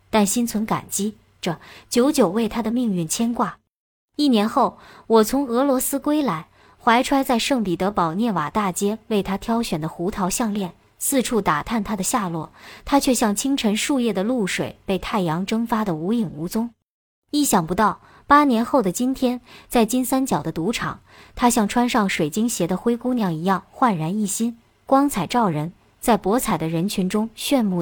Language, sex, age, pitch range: Chinese, male, 20-39, 190-255 Hz